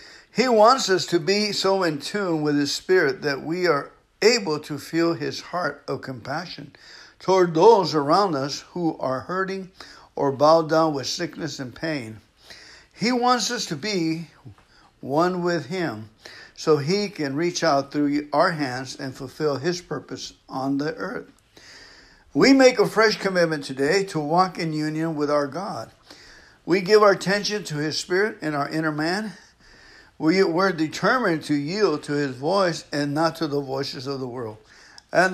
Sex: male